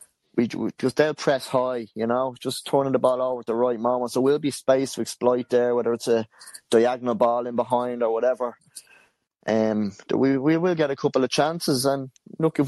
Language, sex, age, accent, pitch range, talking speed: English, male, 20-39, British, 115-140 Hz, 215 wpm